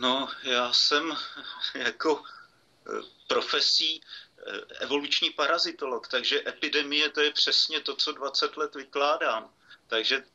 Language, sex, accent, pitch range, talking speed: Czech, male, native, 125-145 Hz, 105 wpm